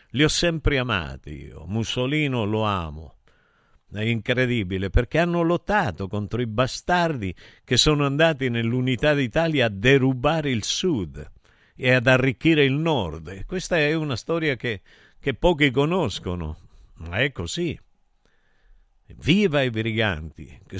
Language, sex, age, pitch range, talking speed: Italian, male, 50-69, 105-150 Hz, 130 wpm